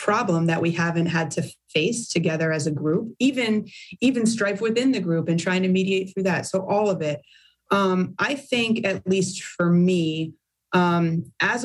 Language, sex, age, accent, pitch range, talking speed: English, female, 30-49, American, 165-200 Hz, 185 wpm